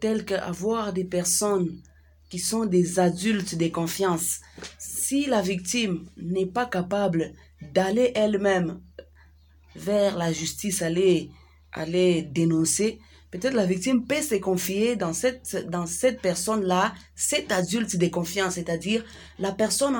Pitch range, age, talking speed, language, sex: 175-220 Hz, 30-49, 125 wpm, French, female